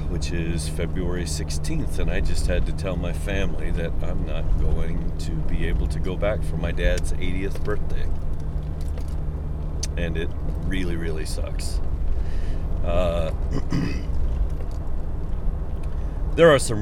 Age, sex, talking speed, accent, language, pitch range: 50-69, male, 130 wpm, American, English, 75-95 Hz